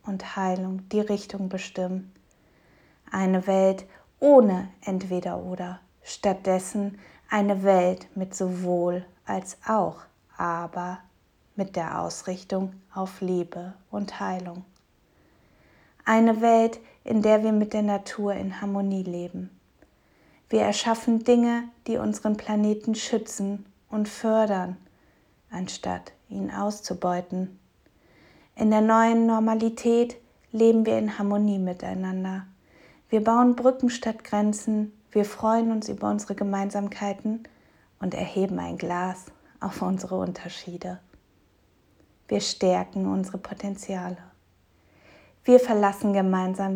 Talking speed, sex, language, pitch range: 100 wpm, female, German, 180-215 Hz